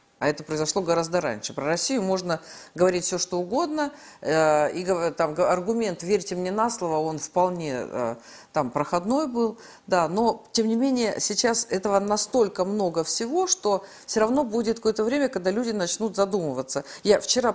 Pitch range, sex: 160-215 Hz, female